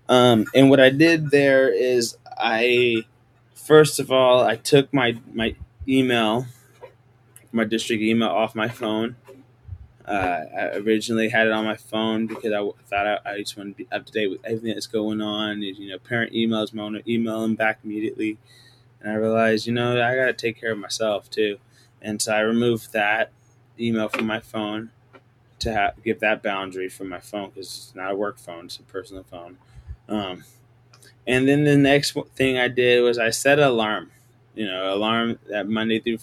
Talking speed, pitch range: 190 wpm, 110-125 Hz